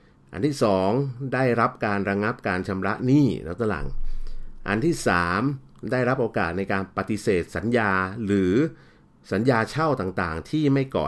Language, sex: Thai, male